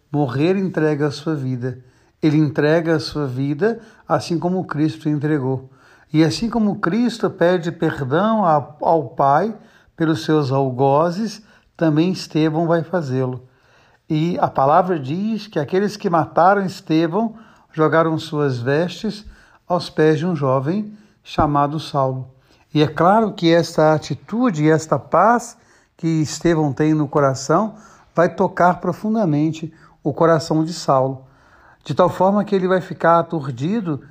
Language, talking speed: Portuguese, 135 wpm